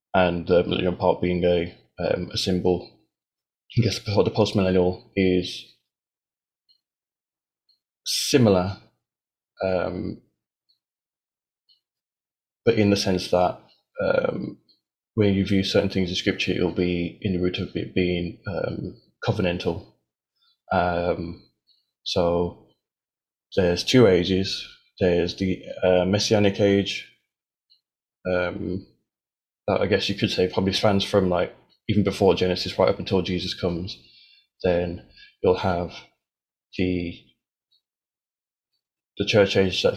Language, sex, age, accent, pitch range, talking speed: English, male, 20-39, British, 90-100 Hz, 115 wpm